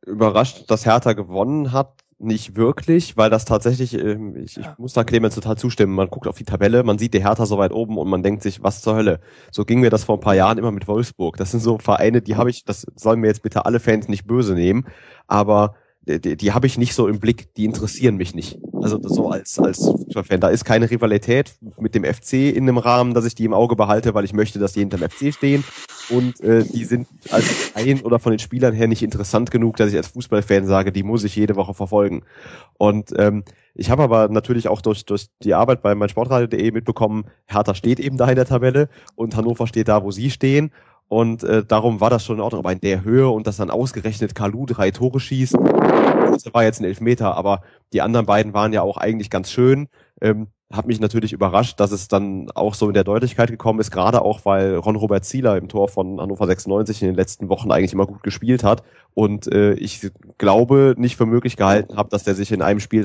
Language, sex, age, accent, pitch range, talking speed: German, male, 30-49, German, 100-120 Hz, 230 wpm